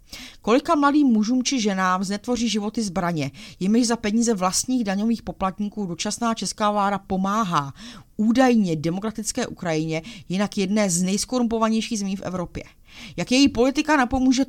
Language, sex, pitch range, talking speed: Czech, female, 170-230 Hz, 135 wpm